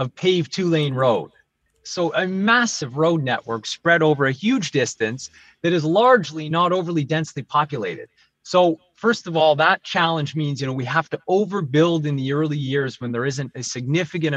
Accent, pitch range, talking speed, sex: American, 120-160 Hz, 185 wpm, male